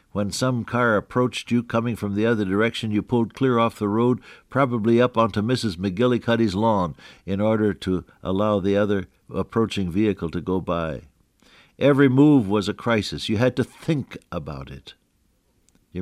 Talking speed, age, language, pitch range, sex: 170 wpm, 60-79, English, 90-120 Hz, male